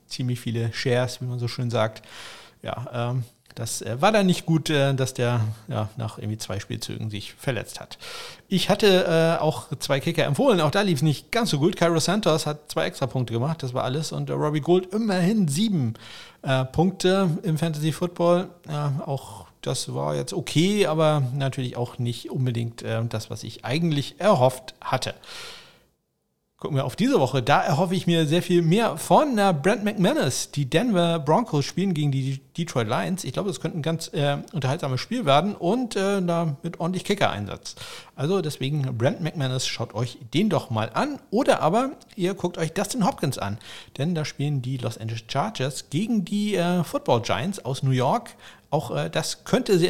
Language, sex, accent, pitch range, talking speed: German, male, German, 125-180 Hz, 175 wpm